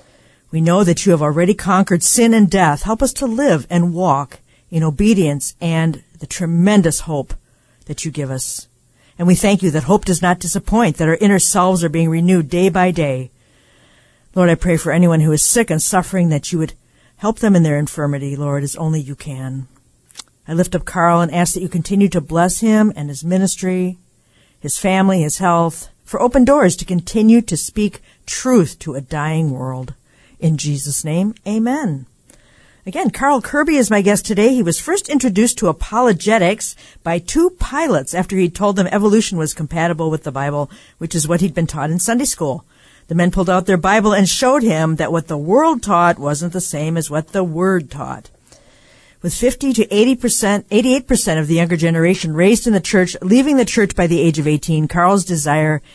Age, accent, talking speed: 50-69, American, 195 wpm